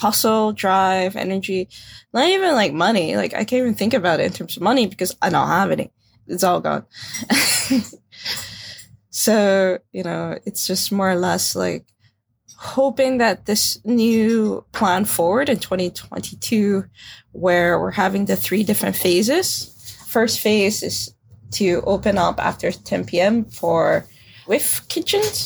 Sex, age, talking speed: female, 20-39, 150 wpm